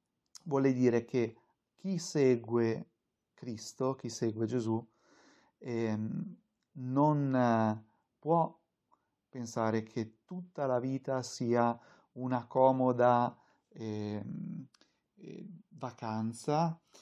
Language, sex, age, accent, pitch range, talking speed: Italian, male, 40-59, native, 115-135 Hz, 85 wpm